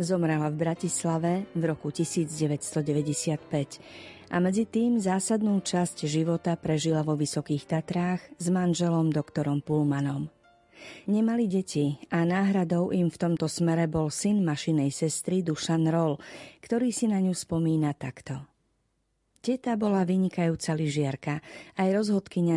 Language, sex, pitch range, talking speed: Slovak, female, 155-185 Hz, 120 wpm